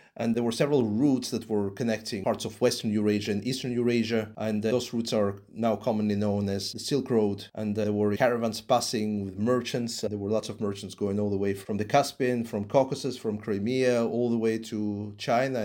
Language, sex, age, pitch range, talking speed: English, male, 30-49, 105-125 Hz, 210 wpm